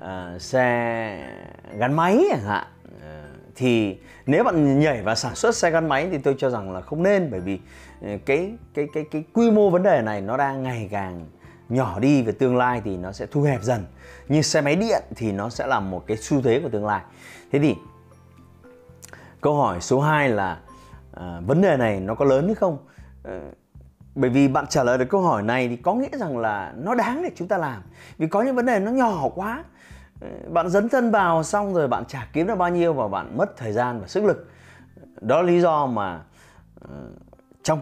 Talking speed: 215 wpm